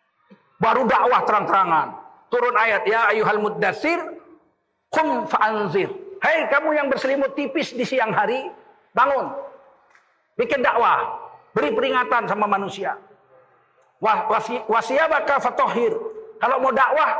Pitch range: 240-395 Hz